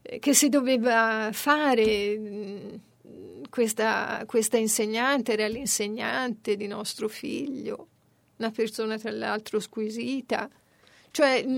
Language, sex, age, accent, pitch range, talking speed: Italian, female, 50-69, native, 220-265 Hz, 95 wpm